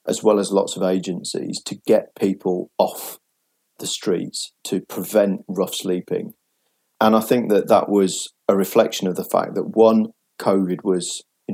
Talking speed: 165 wpm